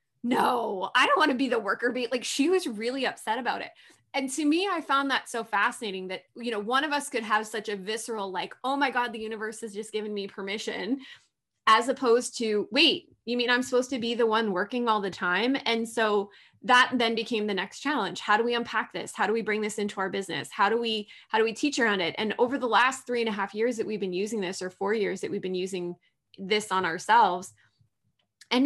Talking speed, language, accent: 245 wpm, English, American